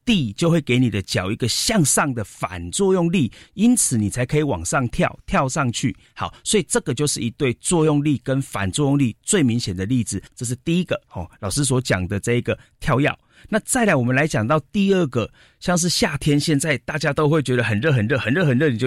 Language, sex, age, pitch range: Chinese, male, 30-49, 115-160 Hz